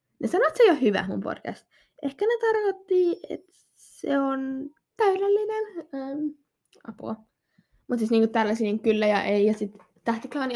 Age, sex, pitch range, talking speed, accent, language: 10-29, female, 215-280 Hz, 155 wpm, native, Finnish